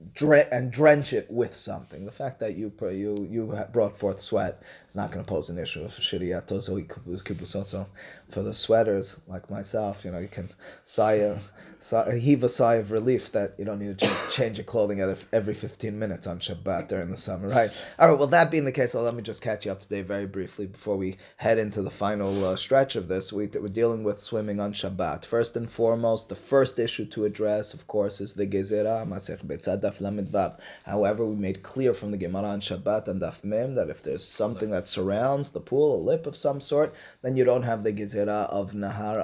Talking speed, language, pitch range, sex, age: 215 wpm, English, 100-130 Hz, male, 20-39